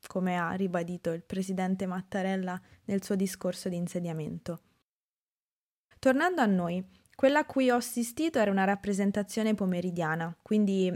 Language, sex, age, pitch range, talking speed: Italian, female, 20-39, 180-215 Hz, 130 wpm